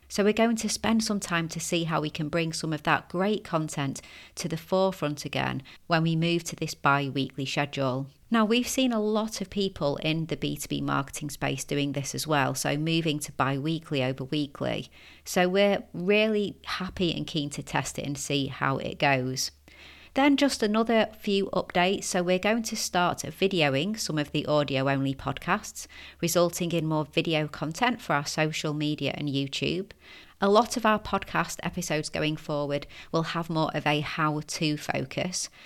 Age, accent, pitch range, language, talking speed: 30-49, British, 145-190 Hz, English, 185 wpm